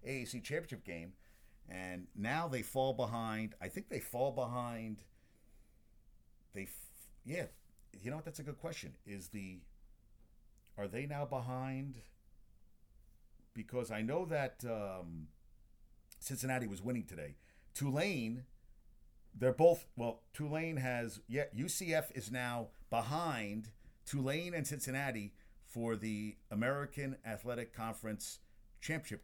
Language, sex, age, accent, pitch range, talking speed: English, male, 50-69, American, 105-130 Hz, 120 wpm